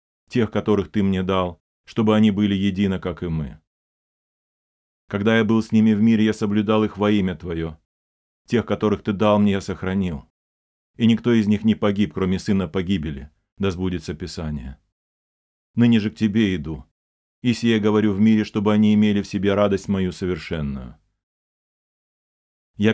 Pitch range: 80-105 Hz